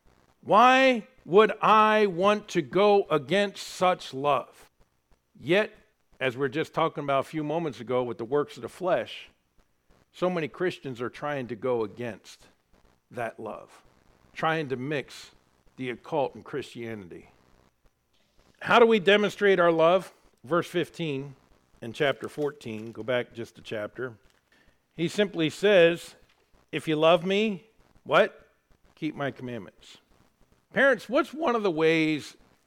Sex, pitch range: male, 130-210 Hz